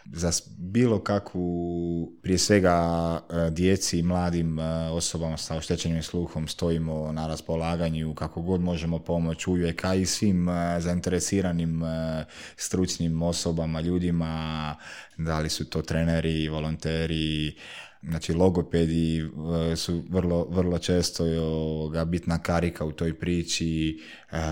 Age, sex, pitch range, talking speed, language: 20-39, male, 80-90 Hz, 110 wpm, Croatian